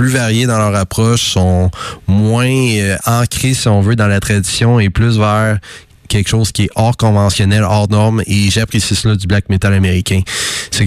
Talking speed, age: 180 wpm, 20-39